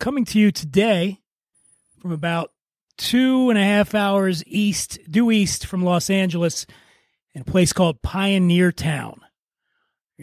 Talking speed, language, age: 135 wpm, English, 30-49